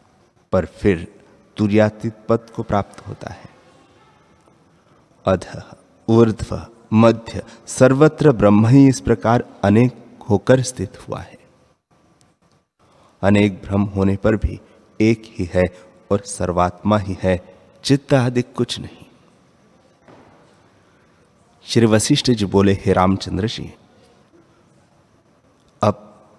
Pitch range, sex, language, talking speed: 95-120 Hz, male, Hindi, 95 wpm